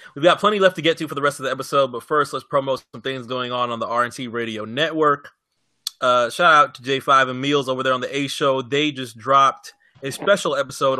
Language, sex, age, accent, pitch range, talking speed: English, male, 20-39, American, 125-150 Hz, 240 wpm